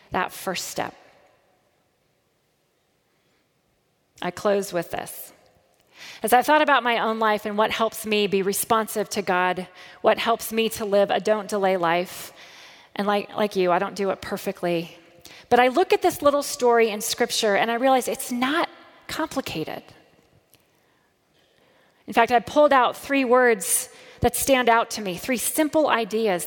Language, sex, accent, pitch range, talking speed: English, female, American, 195-240 Hz, 155 wpm